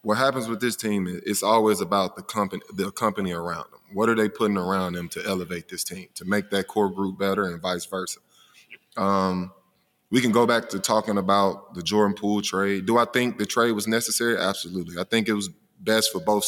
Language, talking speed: English, 220 wpm